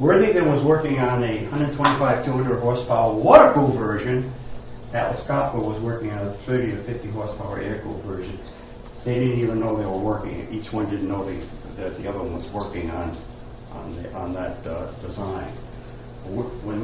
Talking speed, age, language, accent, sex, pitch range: 175 wpm, 60-79, English, American, male, 105-125 Hz